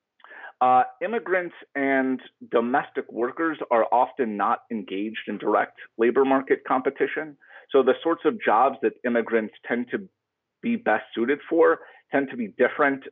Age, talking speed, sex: 40-59, 140 wpm, male